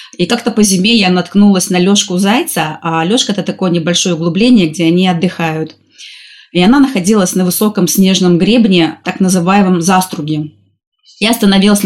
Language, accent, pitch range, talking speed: Russian, native, 180-220 Hz, 155 wpm